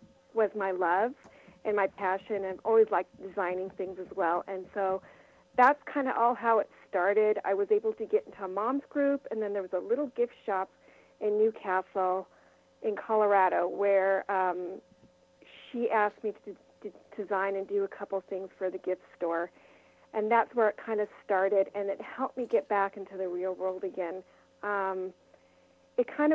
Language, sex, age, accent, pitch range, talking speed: English, female, 40-59, American, 195-240 Hz, 185 wpm